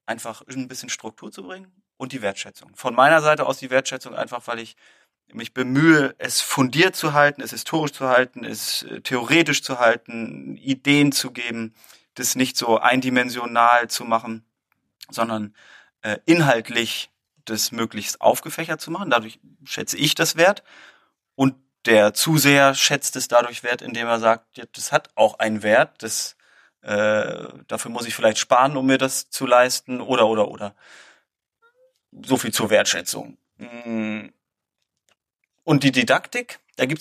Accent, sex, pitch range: German, male, 115-135 Hz